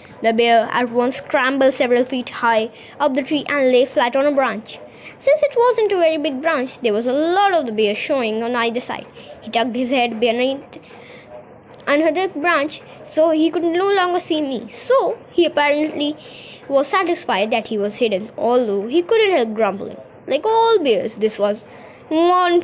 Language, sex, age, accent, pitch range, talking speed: Hindi, female, 20-39, native, 245-350 Hz, 185 wpm